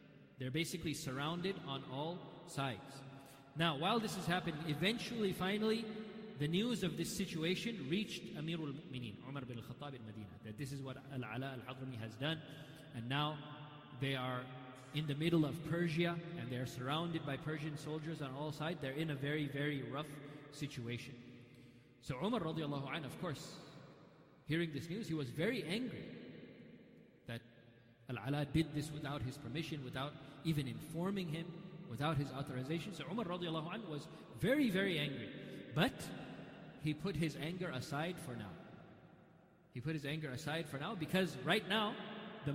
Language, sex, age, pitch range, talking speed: English, male, 30-49, 140-175 Hz, 155 wpm